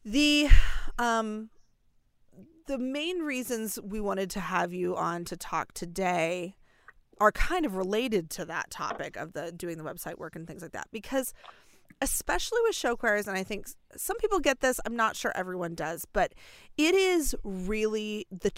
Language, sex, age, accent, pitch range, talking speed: English, female, 30-49, American, 175-225 Hz, 170 wpm